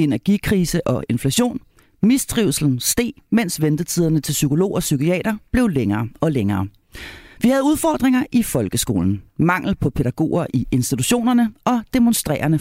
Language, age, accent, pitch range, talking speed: Danish, 40-59, native, 130-220 Hz, 130 wpm